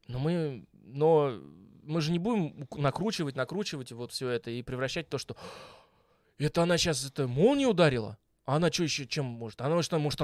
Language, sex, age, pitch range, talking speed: Russian, male, 20-39, 135-185 Hz, 190 wpm